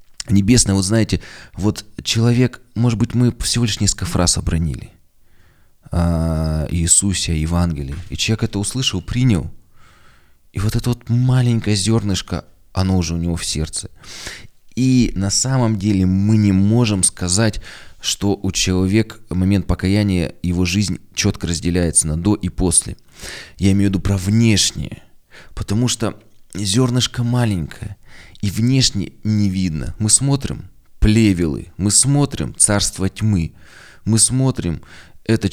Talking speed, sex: 130 wpm, male